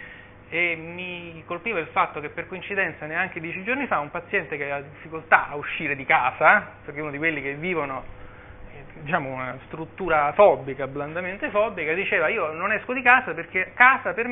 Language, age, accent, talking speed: Italian, 30-49, native, 180 wpm